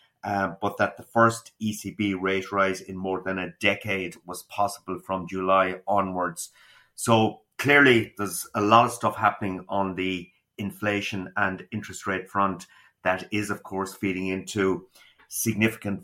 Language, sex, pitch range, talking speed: English, male, 95-105 Hz, 150 wpm